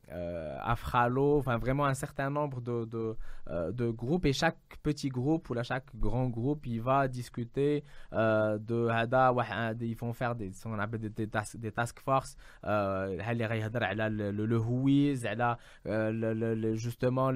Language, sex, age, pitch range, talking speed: English, male, 20-39, 110-135 Hz, 130 wpm